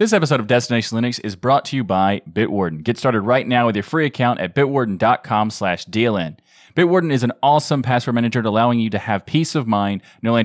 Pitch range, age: 105-135 Hz, 20-39